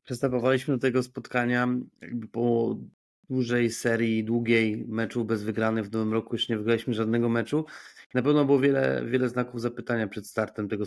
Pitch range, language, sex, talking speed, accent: 110-130 Hz, Polish, male, 160 wpm, native